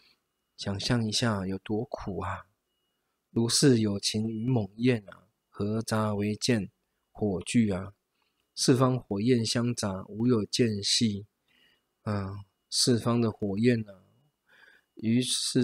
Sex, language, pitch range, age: male, Chinese, 100-120 Hz, 20-39